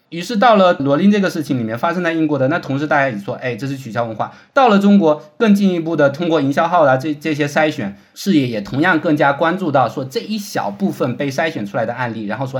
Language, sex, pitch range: Chinese, male, 145-215 Hz